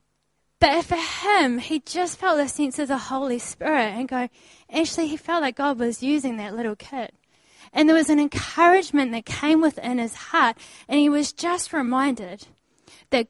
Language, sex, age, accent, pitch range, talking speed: English, female, 20-39, Australian, 215-280 Hz, 180 wpm